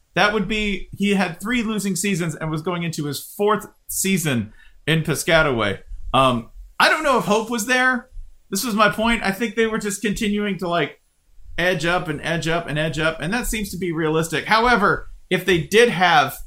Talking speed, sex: 205 wpm, male